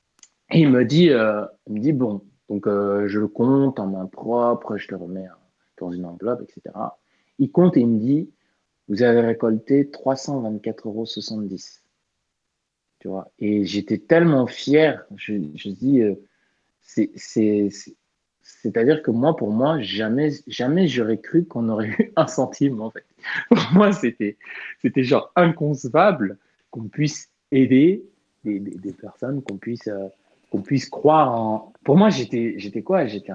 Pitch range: 105-140 Hz